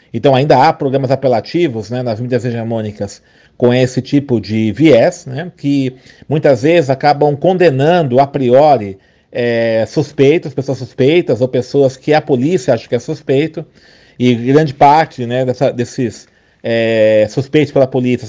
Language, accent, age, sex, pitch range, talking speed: Portuguese, Brazilian, 40-59, male, 120-145 Hz, 150 wpm